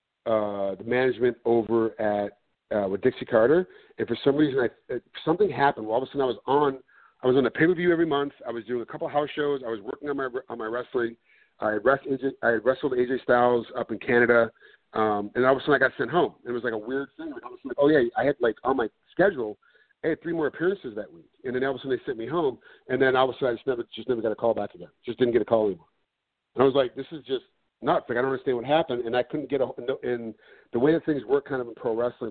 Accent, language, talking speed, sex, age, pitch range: American, English, 290 wpm, male, 40-59, 115-140 Hz